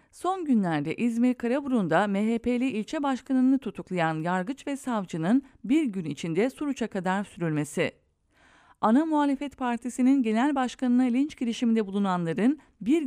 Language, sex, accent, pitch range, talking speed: English, female, Turkish, 200-260 Hz, 120 wpm